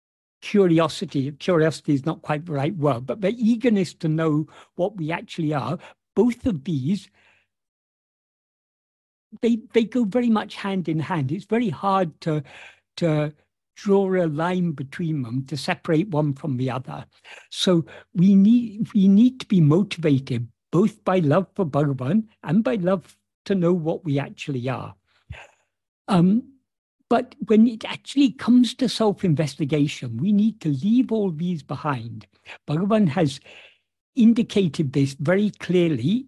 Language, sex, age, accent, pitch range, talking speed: English, male, 60-79, British, 145-200 Hz, 145 wpm